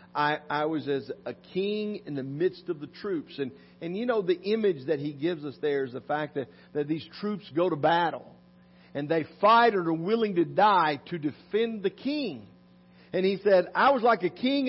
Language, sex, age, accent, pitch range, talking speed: English, male, 50-69, American, 120-190 Hz, 215 wpm